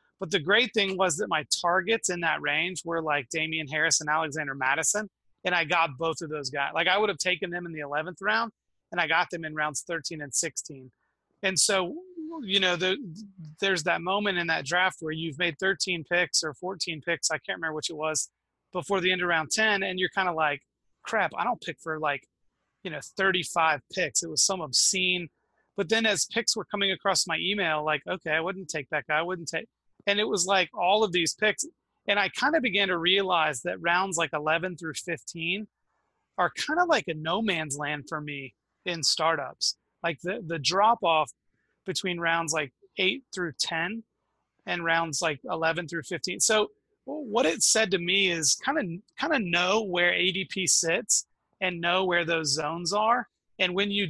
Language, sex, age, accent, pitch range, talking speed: English, male, 30-49, American, 160-195 Hz, 205 wpm